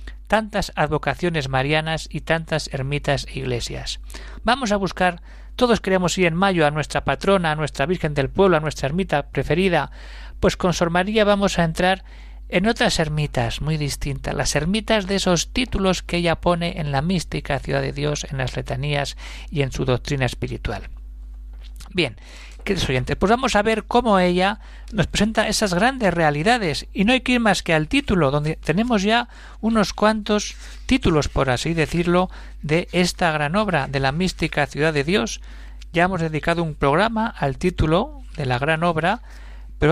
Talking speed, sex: 175 wpm, male